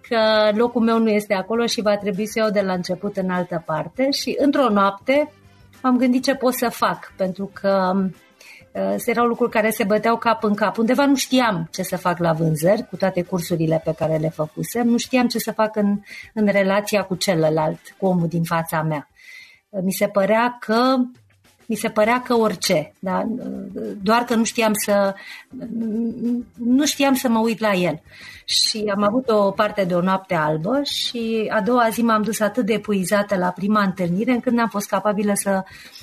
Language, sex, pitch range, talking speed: Romanian, female, 190-240 Hz, 190 wpm